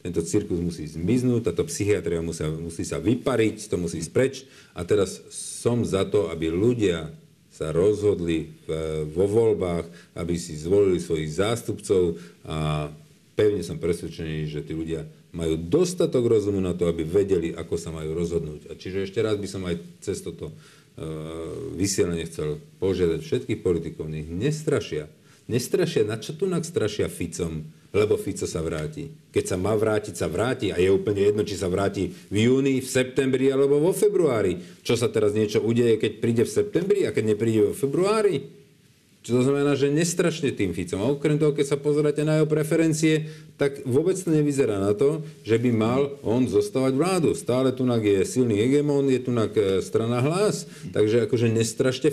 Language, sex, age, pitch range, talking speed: Slovak, male, 50-69, 90-145 Hz, 170 wpm